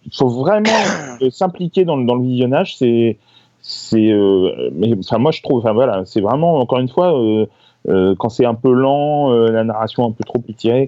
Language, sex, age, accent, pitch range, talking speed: French, male, 30-49, French, 105-145 Hz, 210 wpm